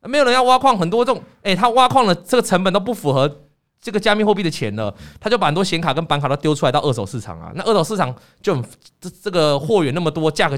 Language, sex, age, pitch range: Chinese, male, 20-39, 120-200 Hz